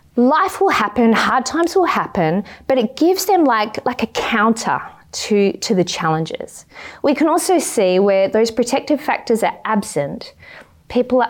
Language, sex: English, female